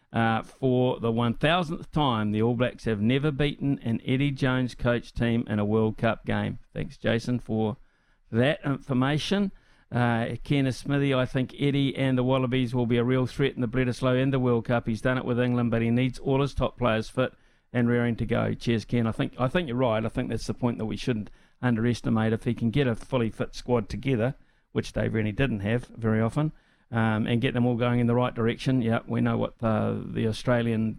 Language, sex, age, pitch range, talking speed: English, male, 50-69, 115-130 Hz, 220 wpm